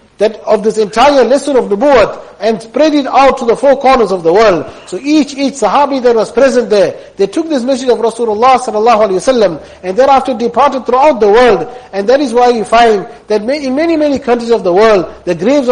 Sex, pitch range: male, 210-255 Hz